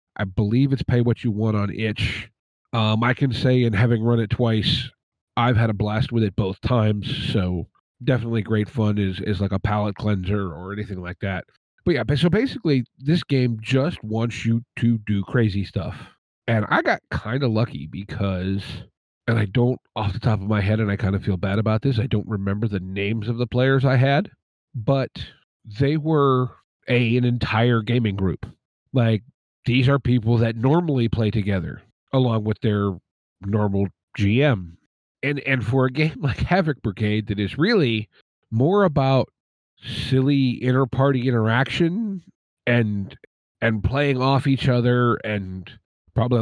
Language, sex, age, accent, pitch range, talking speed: English, male, 40-59, American, 105-135 Hz, 170 wpm